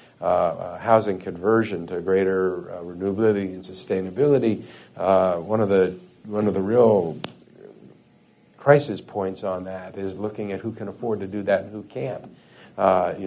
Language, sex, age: English, male, 50-69